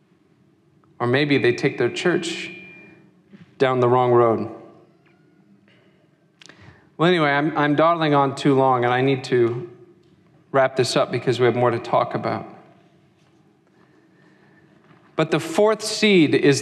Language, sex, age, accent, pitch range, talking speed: English, male, 40-59, American, 140-190 Hz, 135 wpm